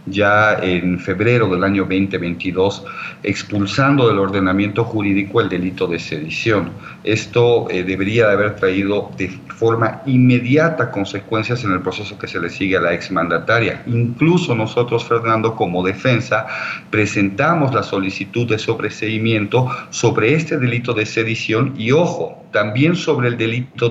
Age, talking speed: 50-69, 135 wpm